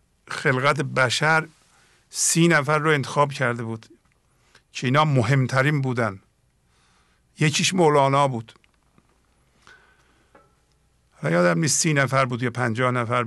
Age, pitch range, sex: 50-69, 125-155 Hz, male